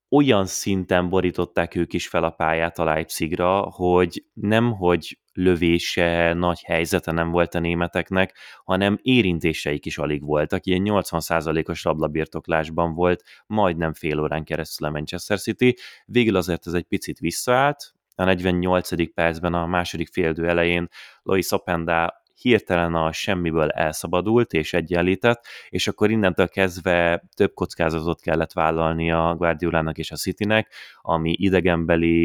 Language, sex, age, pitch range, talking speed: Hungarian, male, 20-39, 80-95 Hz, 130 wpm